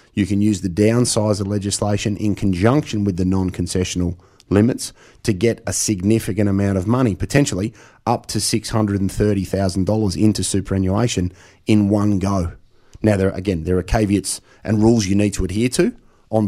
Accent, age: Australian, 30-49